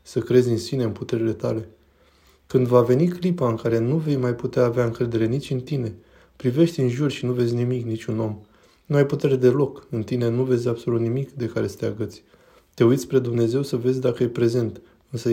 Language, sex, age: Romanian, male, 20-39